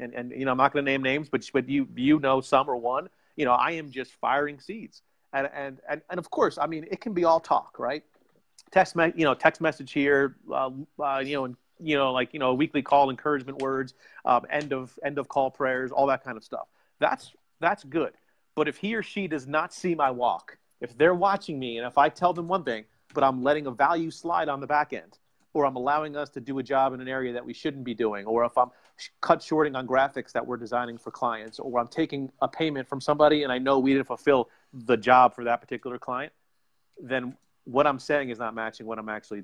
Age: 30-49